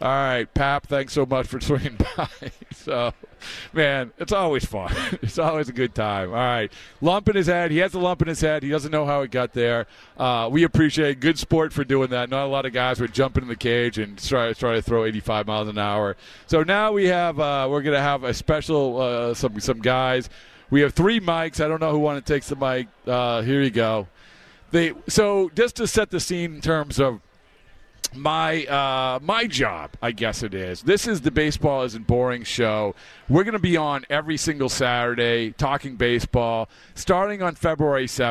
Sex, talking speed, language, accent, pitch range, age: male, 215 wpm, English, American, 125-160 Hz, 40-59